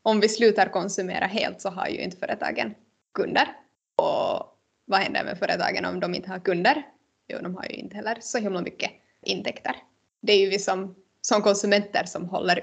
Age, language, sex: 20-39, Swedish, female